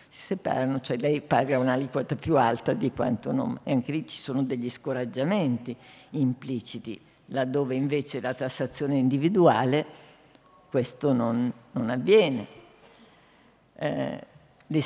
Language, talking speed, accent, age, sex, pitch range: Italian, 125 wpm, native, 50-69, female, 130-160 Hz